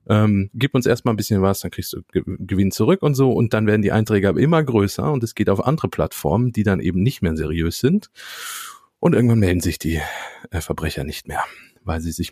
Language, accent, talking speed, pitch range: German, German, 225 wpm, 95-125 Hz